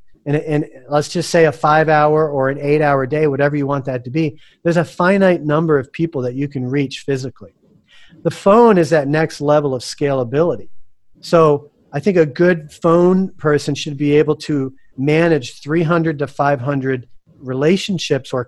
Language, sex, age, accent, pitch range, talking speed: English, male, 40-59, American, 130-165 Hz, 170 wpm